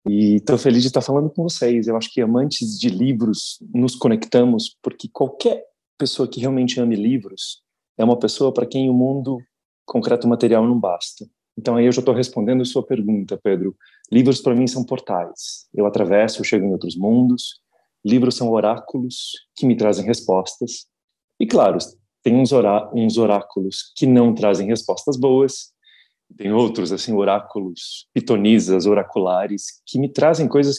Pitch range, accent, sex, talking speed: 105-145 Hz, Brazilian, male, 160 wpm